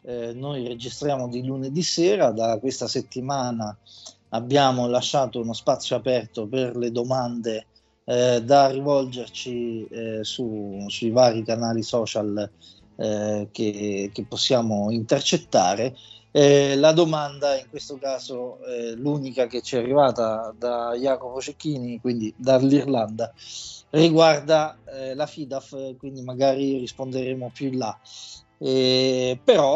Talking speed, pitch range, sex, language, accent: 120 wpm, 120-145 Hz, male, Italian, native